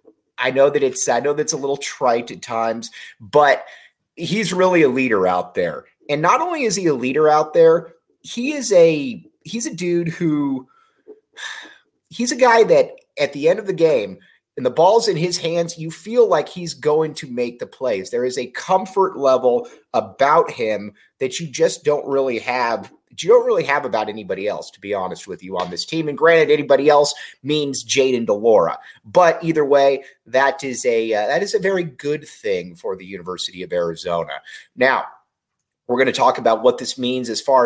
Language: English